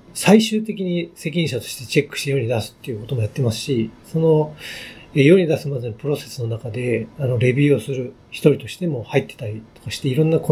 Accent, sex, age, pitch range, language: native, male, 40-59, 120-155 Hz, Japanese